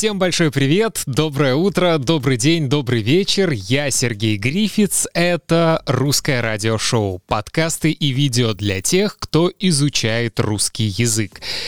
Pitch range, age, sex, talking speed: 115-160 Hz, 20-39, male, 125 wpm